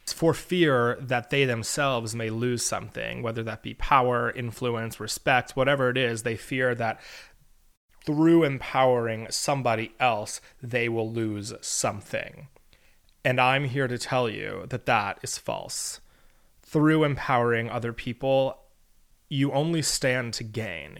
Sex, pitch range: male, 115-140 Hz